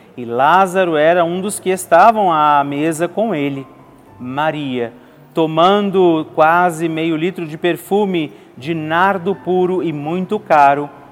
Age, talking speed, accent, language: 40-59, 130 wpm, Brazilian, Portuguese